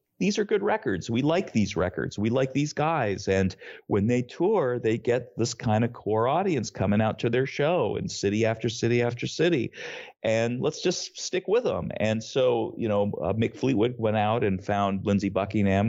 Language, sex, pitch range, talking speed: English, male, 90-115 Hz, 200 wpm